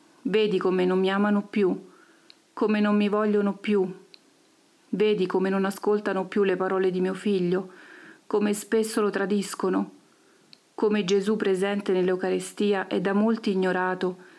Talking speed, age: 140 wpm, 40-59